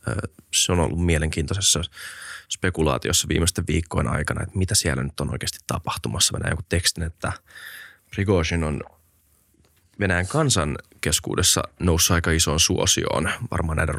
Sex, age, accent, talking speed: male, 20-39, native, 120 wpm